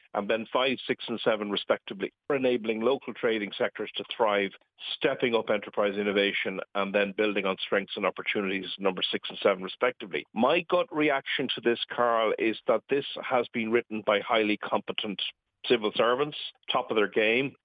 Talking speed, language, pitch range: 175 wpm, English, 100-140 Hz